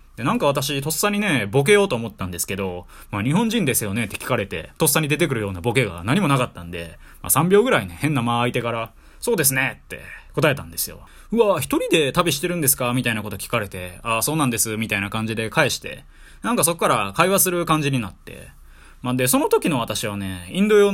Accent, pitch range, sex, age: native, 100-155 Hz, male, 20-39